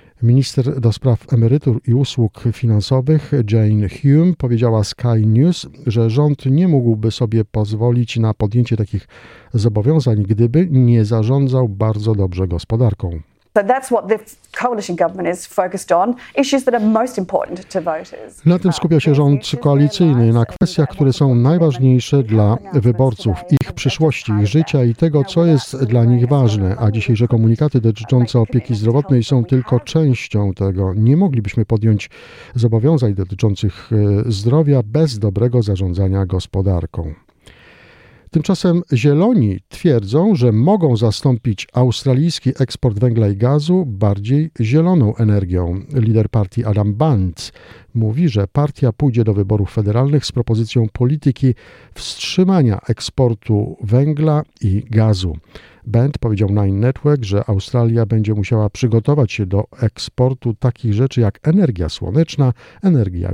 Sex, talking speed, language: male, 115 wpm, Polish